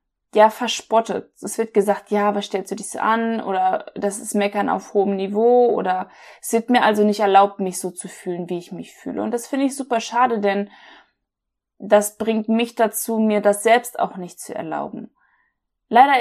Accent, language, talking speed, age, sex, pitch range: German, German, 195 wpm, 20-39, female, 200-230 Hz